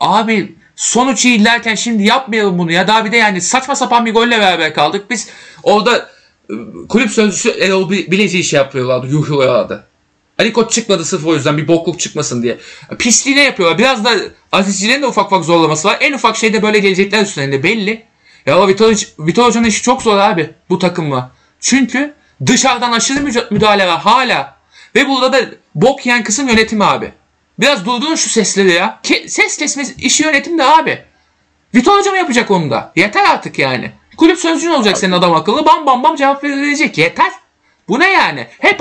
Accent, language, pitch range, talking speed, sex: native, Turkish, 185-290 Hz, 180 wpm, male